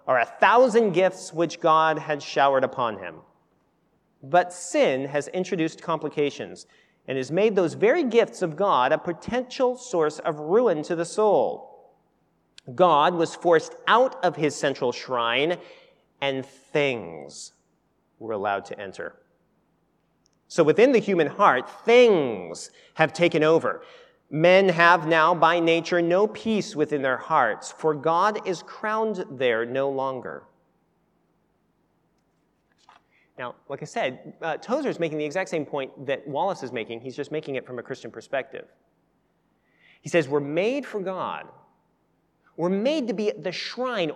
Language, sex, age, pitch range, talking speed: English, male, 40-59, 150-210 Hz, 145 wpm